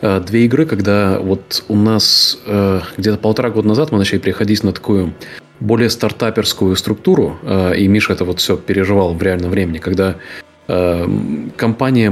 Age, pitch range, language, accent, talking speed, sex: 30-49, 95-115 Hz, Russian, native, 160 wpm, male